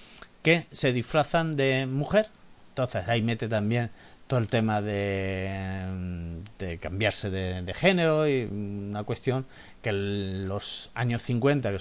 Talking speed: 135 wpm